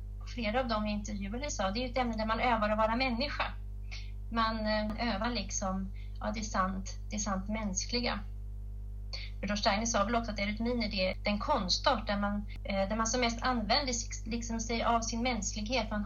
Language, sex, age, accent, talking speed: Swedish, female, 30-49, native, 200 wpm